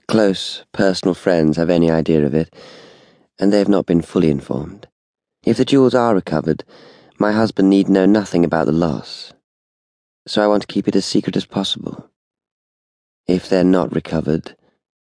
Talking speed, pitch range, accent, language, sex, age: 170 wpm, 80-100 Hz, British, English, male, 30-49